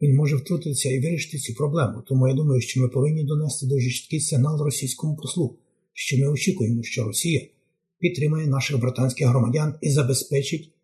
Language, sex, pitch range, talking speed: Ukrainian, male, 130-155 Hz, 165 wpm